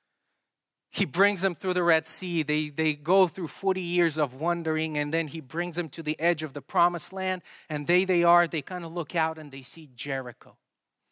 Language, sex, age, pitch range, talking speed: English, male, 30-49, 160-240 Hz, 215 wpm